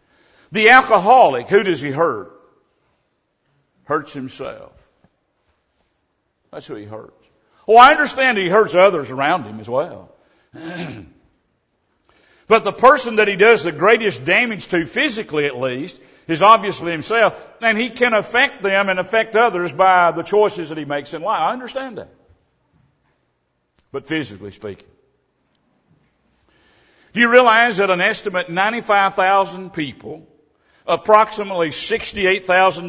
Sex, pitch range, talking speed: male, 155-220 Hz, 130 wpm